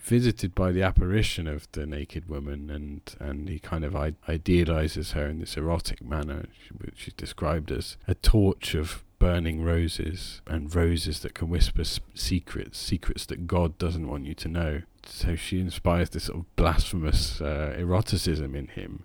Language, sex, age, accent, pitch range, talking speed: English, male, 40-59, British, 80-95 Hz, 175 wpm